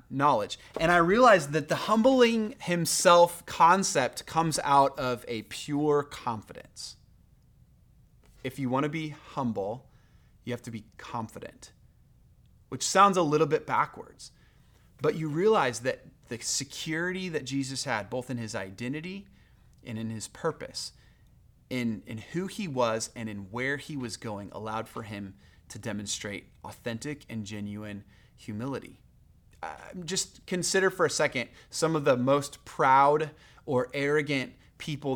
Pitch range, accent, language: 125-170 Hz, American, English